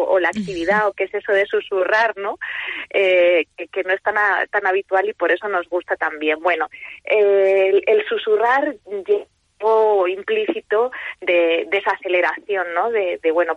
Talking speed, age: 165 wpm, 20-39